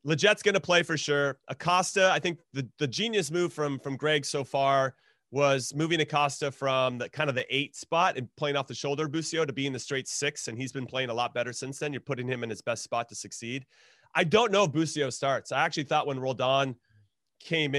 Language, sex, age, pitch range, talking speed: English, male, 30-49, 130-165 Hz, 235 wpm